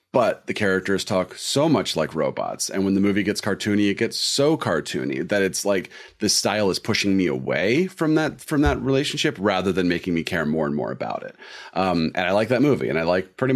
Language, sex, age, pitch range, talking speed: English, male, 30-49, 85-100 Hz, 230 wpm